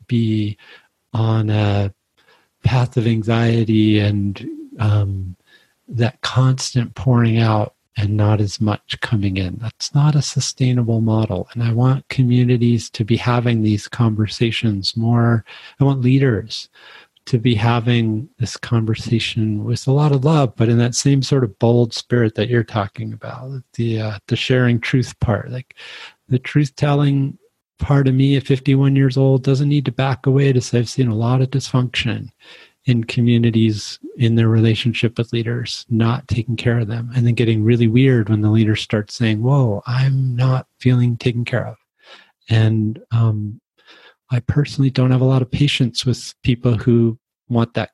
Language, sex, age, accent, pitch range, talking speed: English, male, 40-59, American, 110-130 Hz, 165 wpm